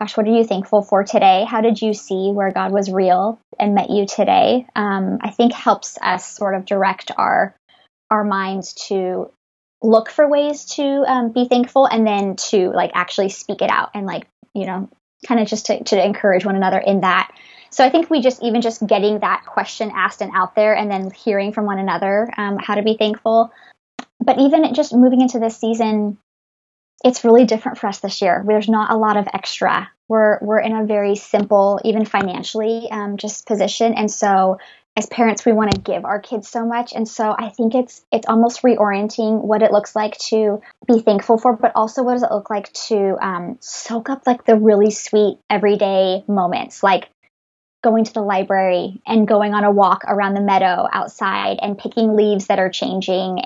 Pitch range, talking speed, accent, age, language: 200-230 Hz, 205 wpm, American, 20-39, English